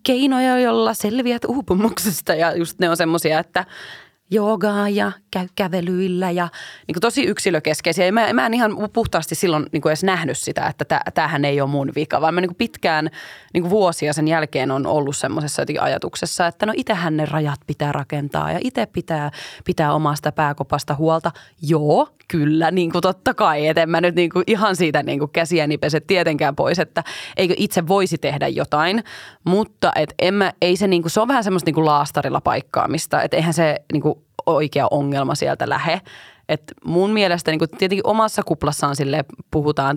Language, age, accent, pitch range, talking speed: Finnish, 20-39, native, 155-190 Hz, 170 wpm